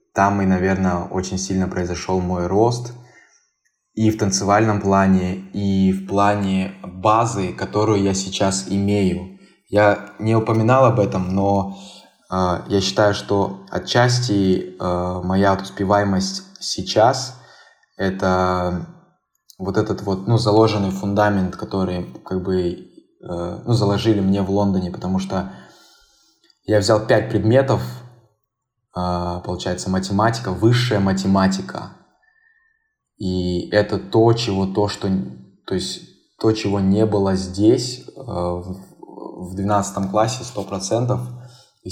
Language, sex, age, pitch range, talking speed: Russian, male, 20-39, 95-115 Hz, 115 wpm